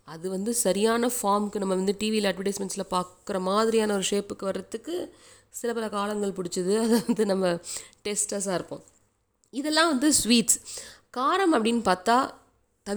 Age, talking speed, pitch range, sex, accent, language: 20-39, 130 wpm, 180-235 Hz, female, native, Tamil